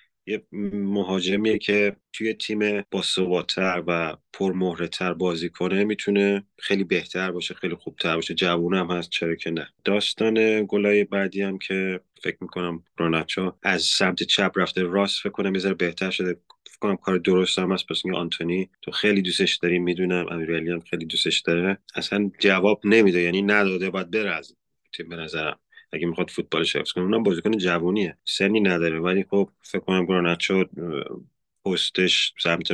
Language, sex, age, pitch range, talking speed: Persian, male, 30-49, 90-100 Hz, 145 wpm